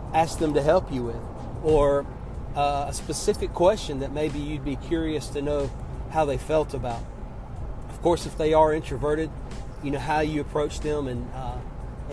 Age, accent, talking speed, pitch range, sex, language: 40-59, American, 180 wpm, 125-150 Hz, male, English